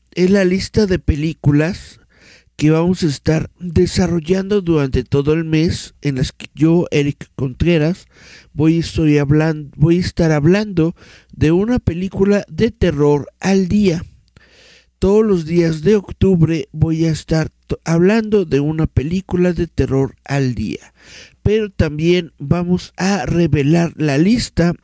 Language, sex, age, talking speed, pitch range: Spanish, male, 60-79, 130 wpm, 145-180 Hz